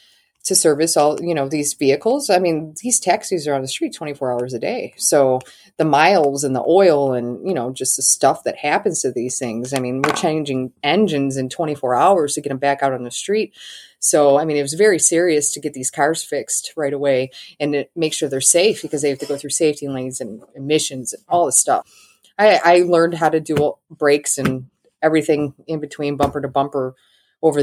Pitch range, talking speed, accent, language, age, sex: 140-180 Hz, 215 wpm, American, English, 30-49, female